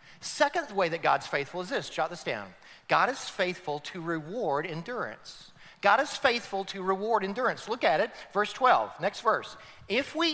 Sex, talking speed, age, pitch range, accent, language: male, 180 wpm, 40-59, 200-285 Hz, American, English